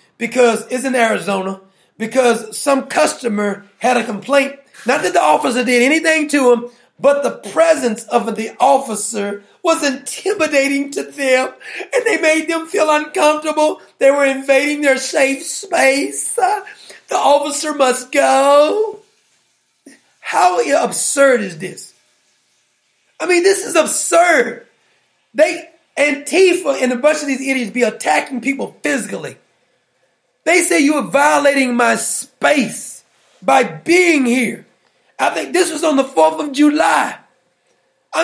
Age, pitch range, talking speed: 40-59, 245-315 Hz, 135 wpm